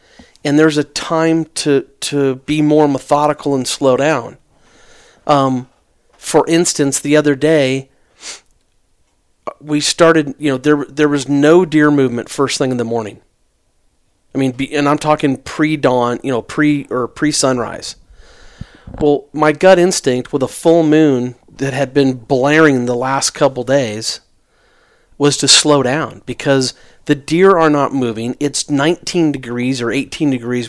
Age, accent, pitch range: 40-59, American, 130-155 Hz